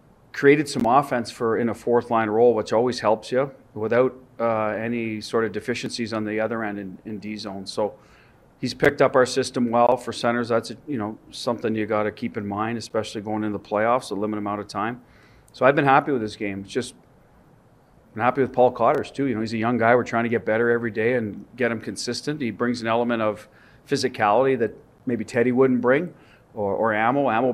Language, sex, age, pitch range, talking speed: English, male, 40-59, 110-125 Hz, 225 wpm